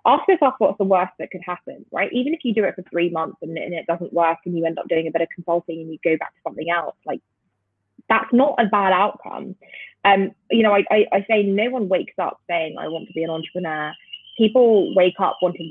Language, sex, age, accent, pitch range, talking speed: English, female, 20-39, British, 165-210 Hz, 250 wpm